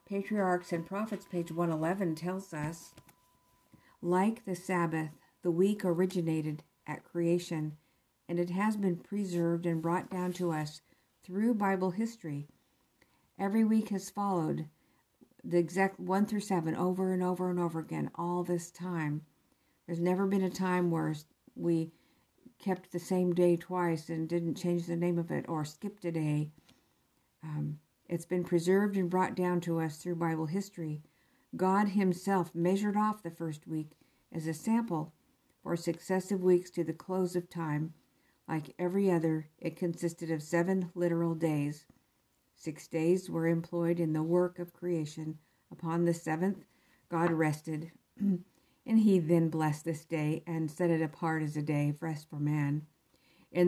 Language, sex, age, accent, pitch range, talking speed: English, female, 50-69, American, 160-185 Hz, 155 wpm